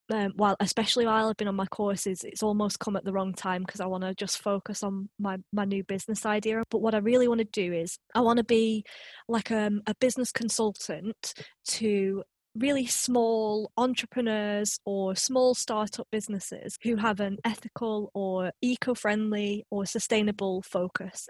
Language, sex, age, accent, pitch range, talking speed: English, female, 20-39, British, 200-240 Hz, 170 wpm